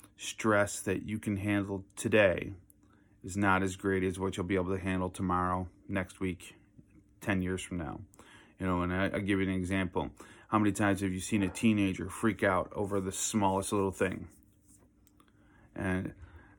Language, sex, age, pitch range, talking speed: English, male, 30-49, 95-105 Hz, 175 wpm